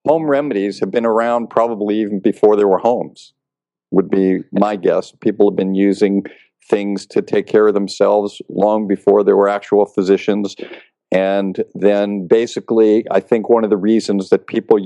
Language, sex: English, male